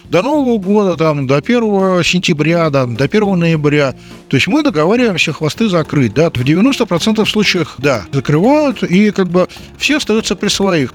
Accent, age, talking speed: native, 50-69, 165 wpm